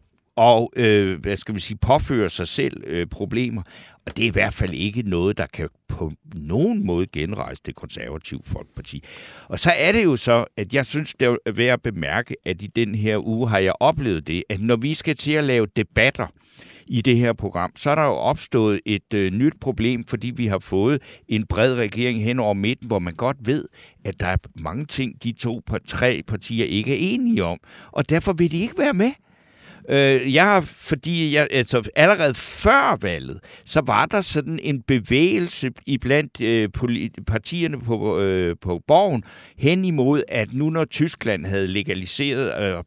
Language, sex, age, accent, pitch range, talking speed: Danish, male, 60-79, native, 105-145 Hz, 190 wpm